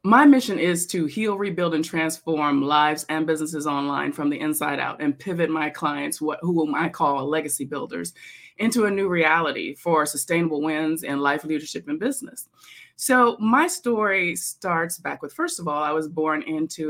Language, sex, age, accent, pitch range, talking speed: English, female, 20-39, American, 150-185 Hz, 180 wpm